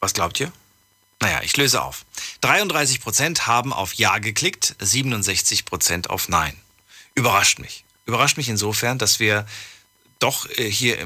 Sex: male